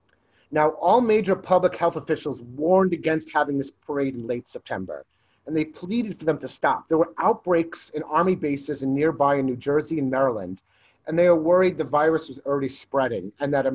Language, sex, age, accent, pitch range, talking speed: English, male, 40-59, American, 135-170 Hz, 200 wpm